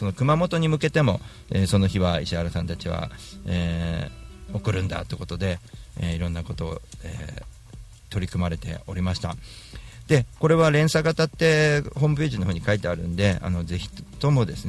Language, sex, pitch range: Japanese, male, 90-115 Hz